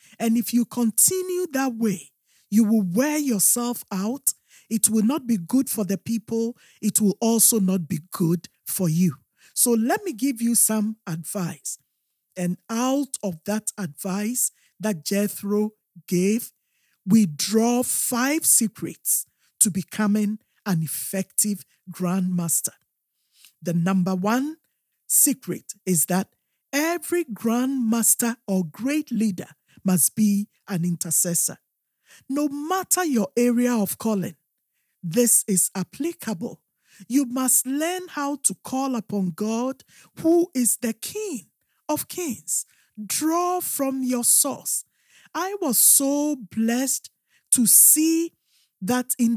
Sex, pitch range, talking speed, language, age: male, 195-260 Hz, 125 wpm, English, 50-69